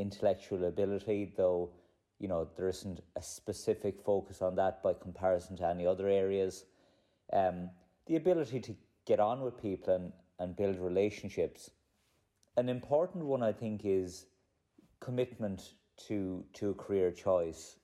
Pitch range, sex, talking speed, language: 90-110 Hz, male, 140 wpm, English